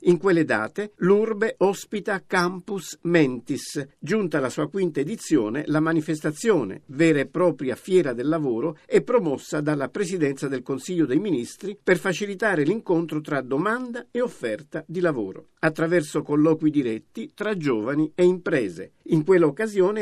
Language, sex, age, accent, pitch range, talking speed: Italian, male, 50-69, native, 145-190 Hz, 140 wpm